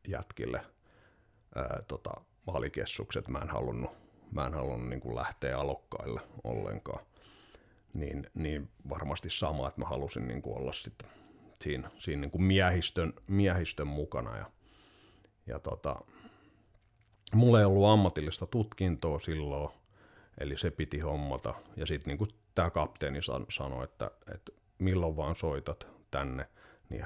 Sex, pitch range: male, 70-100 Hz